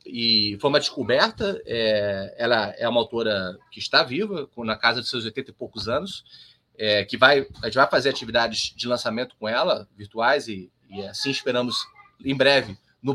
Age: 30-49